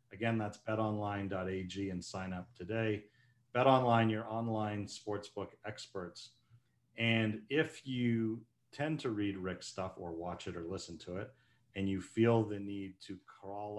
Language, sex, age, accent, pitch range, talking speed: English, male, 40-59, American, 100-125 Hz, 150 wpm